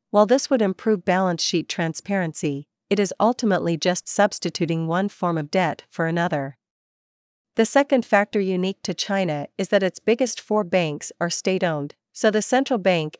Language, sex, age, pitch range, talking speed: Vietnamese, female, 40-59, 165-205 Hz, 165 wpm